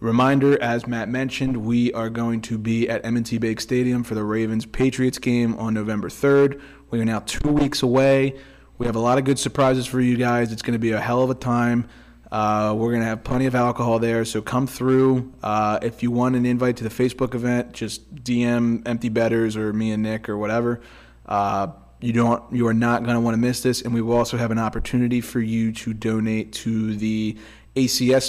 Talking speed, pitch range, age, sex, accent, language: 220 wpm, 110-125 Hz, 20-39, male, American, English